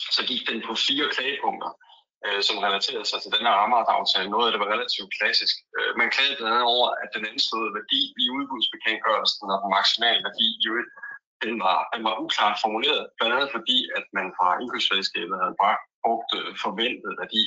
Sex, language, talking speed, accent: male, Danish, 180 wpm, native